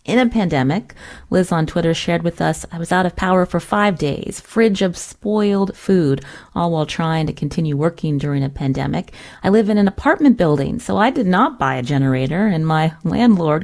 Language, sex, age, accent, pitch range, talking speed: English, female, 30-49, American, 145-185 Hz, 200 wpm